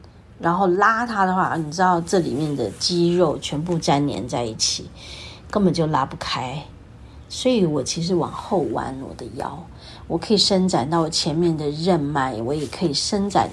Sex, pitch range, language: female, 145-200 Hz, Chinese